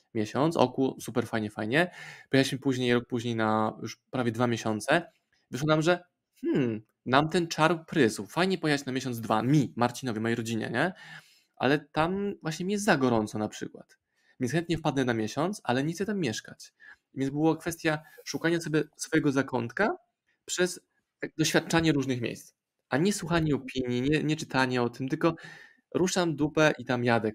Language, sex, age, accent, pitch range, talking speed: Polish, male, 20-39, native, 120-155 Hz, 170 wpm